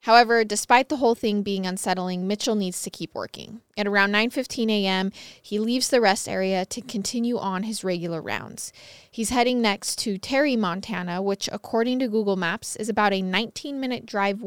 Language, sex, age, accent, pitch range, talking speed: English, female, 20-39, American, 190-235 Hz, 180 wpm